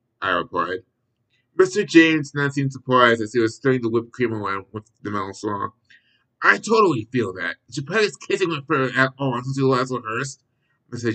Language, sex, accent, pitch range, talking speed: English, male, American, 115-140 Hz, 195 wpm